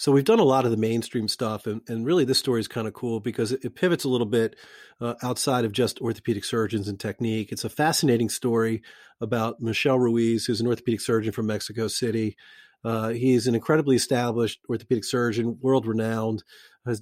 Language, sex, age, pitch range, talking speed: English, male, 40-59, 110-125 Hz, 200 wpm